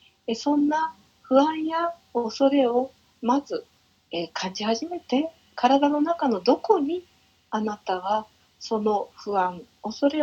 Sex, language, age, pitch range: female, Japanese, 50-69, 220-320 Hz